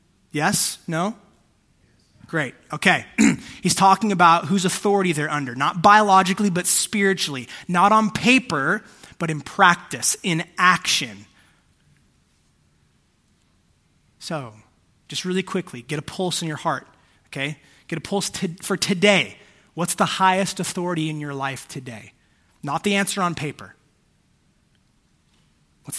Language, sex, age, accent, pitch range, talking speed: English, male, 20-39, American, 140-185 Hz, 120 wpm